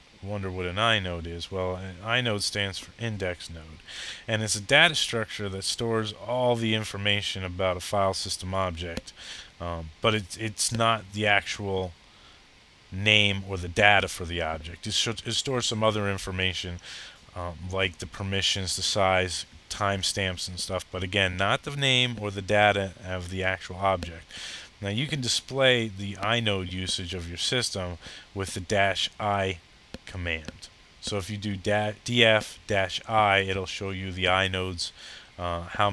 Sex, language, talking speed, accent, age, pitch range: male, English, 160 wpm, American, 30-49, 90-110 Hz